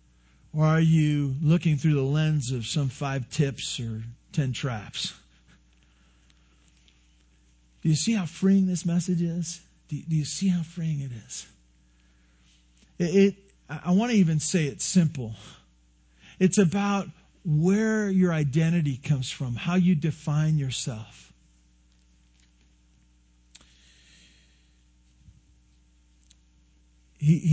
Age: 50-69